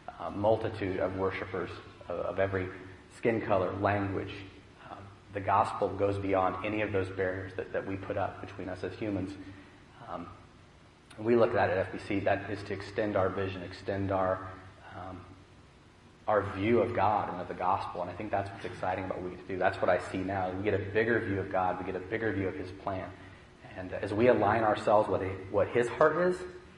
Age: 30-49